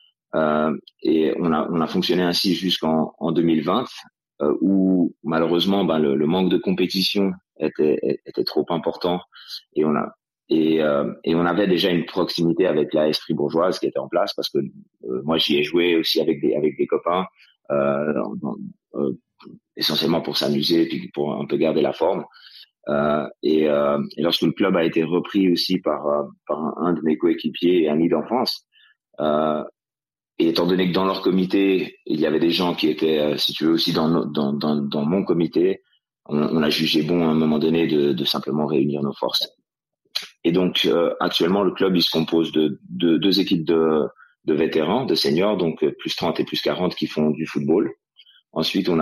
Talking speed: 200 wpm